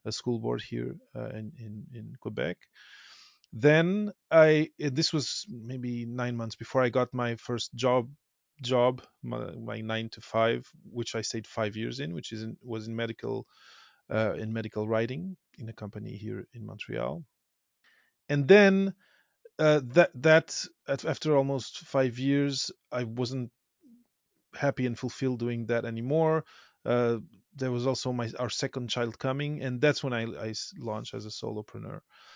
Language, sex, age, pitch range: English, male, 30-49, 115-140 Hz